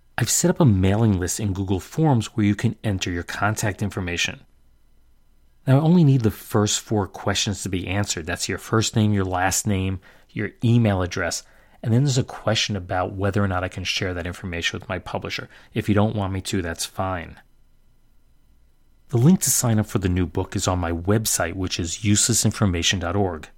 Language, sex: English, male